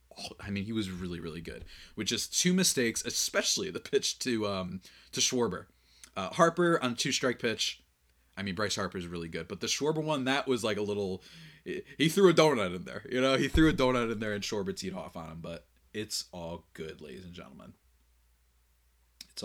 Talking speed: 210 wpm